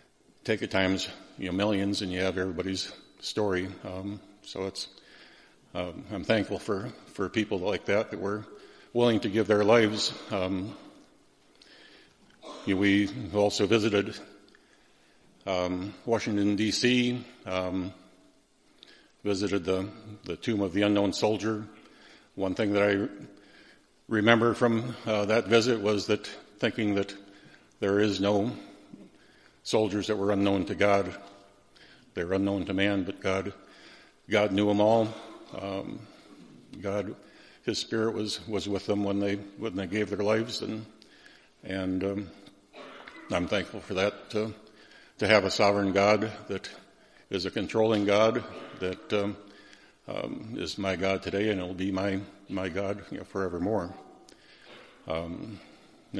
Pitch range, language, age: 95-105 Hz, English, 50-69